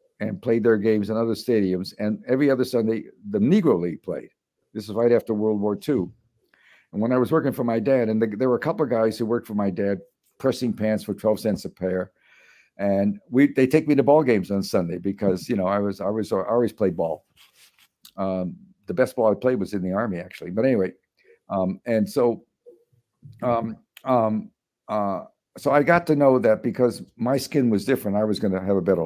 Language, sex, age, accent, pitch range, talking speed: English, male, 50-69, American, 100-130 Hz, 220 wpm